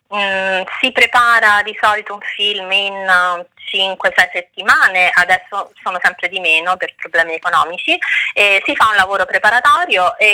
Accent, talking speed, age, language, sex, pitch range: native, 150 wpm, 30-49, Italian, female, 185-240 Hz